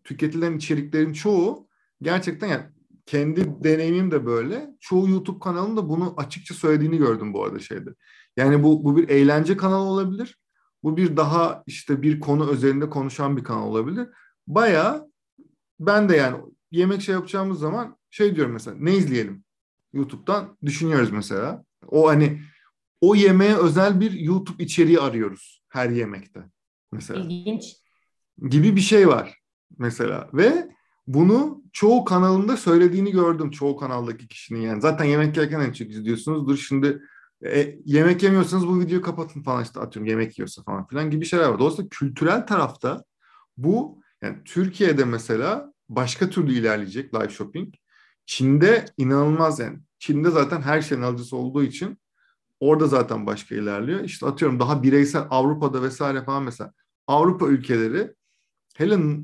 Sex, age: male, 50-69